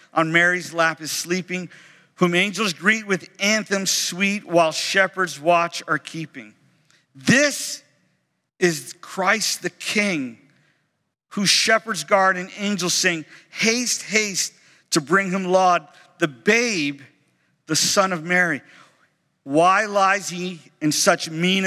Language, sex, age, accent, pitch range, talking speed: English, male, 50-69, American, 160-200 Hz, 125 wpm